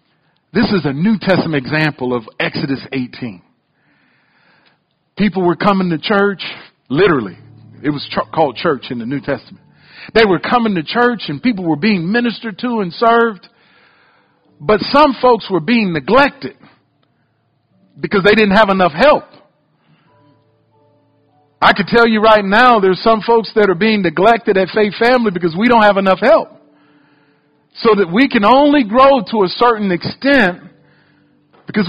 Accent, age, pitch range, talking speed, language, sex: American, 50-69, 175-240 Hz, 150 wpm, English, male